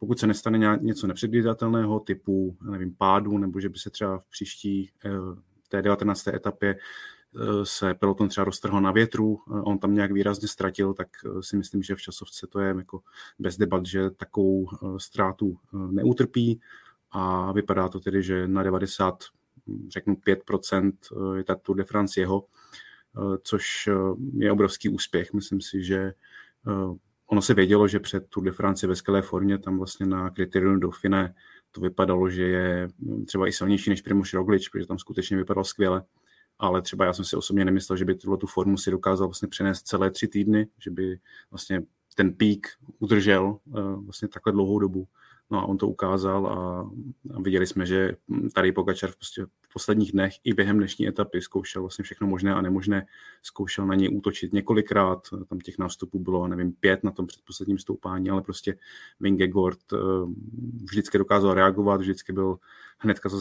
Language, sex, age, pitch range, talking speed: Czech, male, 30-49, 95-100 Hz, 165 wpm